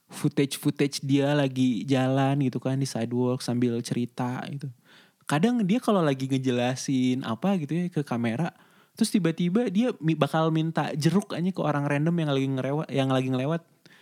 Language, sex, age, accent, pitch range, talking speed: Indonesian, male, 20-39, native, 130-180 Hz, 165 wpm